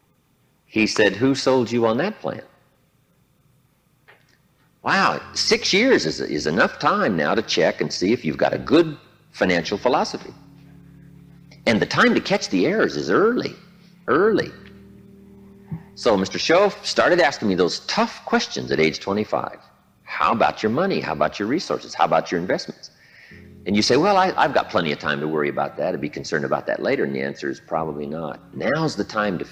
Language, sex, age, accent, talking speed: English, male, 50-69, American, 185 wpm